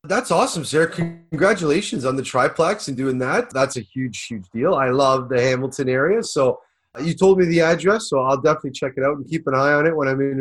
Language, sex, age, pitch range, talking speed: English, male, 30-49, 140-175 Hz, 235 wpm